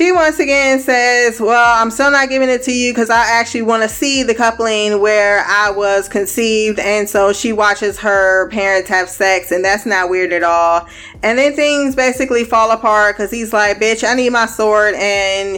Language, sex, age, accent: English, female, 20-39, American